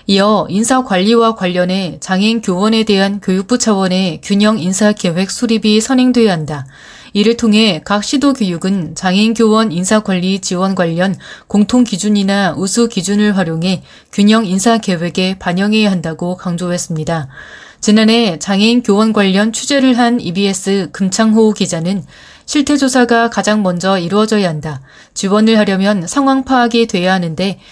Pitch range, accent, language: 185-225 Hz, native, Korean